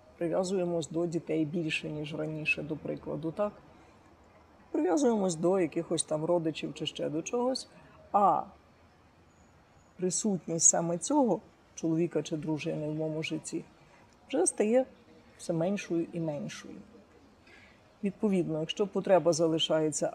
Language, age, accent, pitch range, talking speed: Ukrainian, 50-69, native, 160-195 Hz, 115 wpm